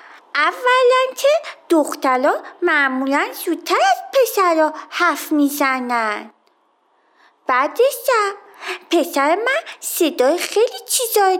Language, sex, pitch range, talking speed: Persian, female, 295-380 Hz, 85 wpm